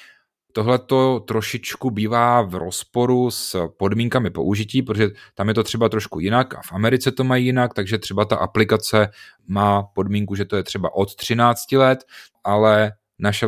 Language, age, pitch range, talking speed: Czech, 30-49, 100-120 Hz, 165 wpm